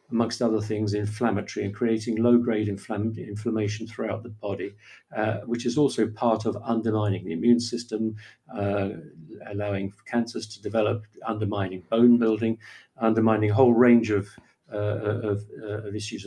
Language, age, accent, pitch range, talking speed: English, 50-69, British, 105-120 Hz, 145 wpm